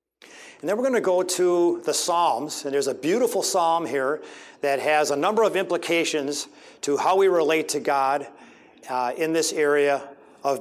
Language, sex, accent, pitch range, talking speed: English, male, American, 145-210 Hz, 180 wpm